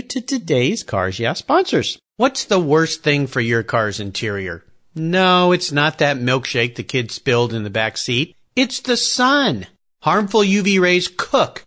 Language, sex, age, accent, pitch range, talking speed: English, male, 50-69, American, 135-210 Hz, 165 wpm